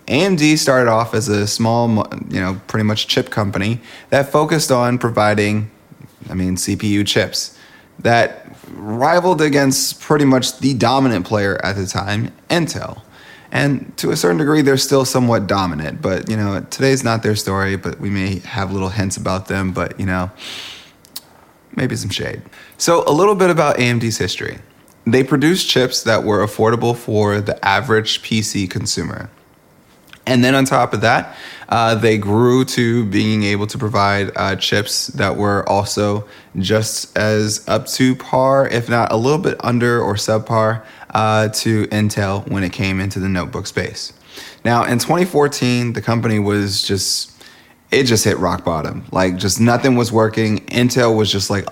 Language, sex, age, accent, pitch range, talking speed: English, male, 20-39, American, 100-125 Hz, 165 wpm